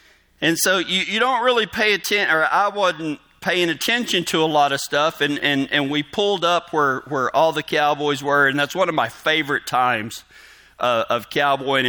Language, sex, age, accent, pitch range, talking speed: English, male, 40-59, American, 145-185 Hz, 200 wpm